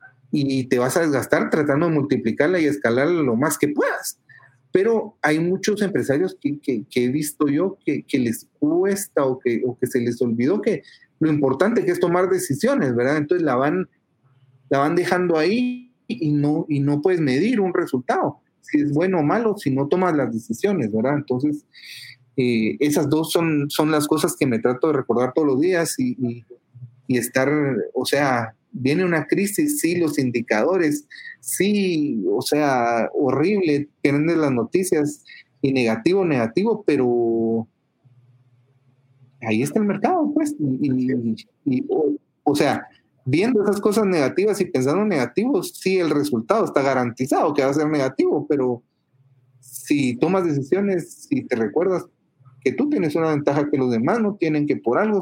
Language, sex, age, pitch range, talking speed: Spanish, male, 40-59, 130-185 Hz, 170 wpm